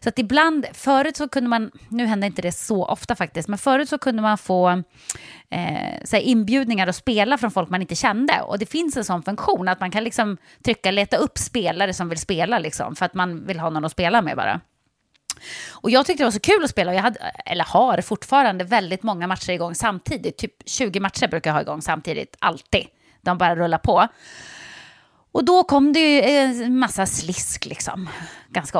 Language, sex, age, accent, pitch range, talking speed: Swedish, female, 30-49, native, 185-275 Hz, 210 wpm